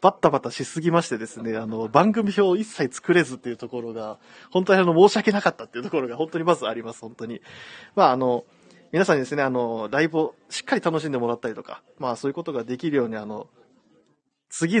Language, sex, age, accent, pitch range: Japanese, male, 20-39, native, 115-150 Hz